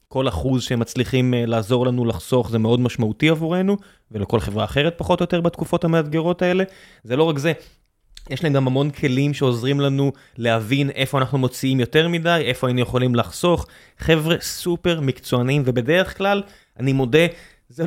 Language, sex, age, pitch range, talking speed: Hebrew, male, 20-39, 125-160 Hz, 165 wpm